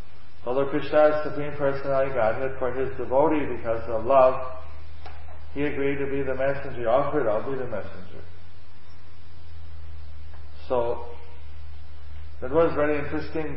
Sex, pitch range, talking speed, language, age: male, 85-140 Hz, 130 wpm, English, 50-69